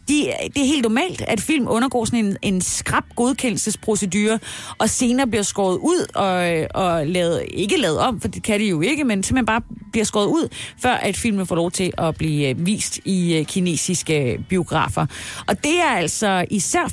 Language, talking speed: Danish, 190 wpm